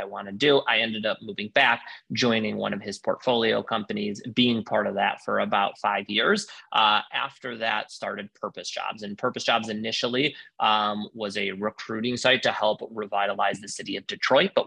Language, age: English, 30-49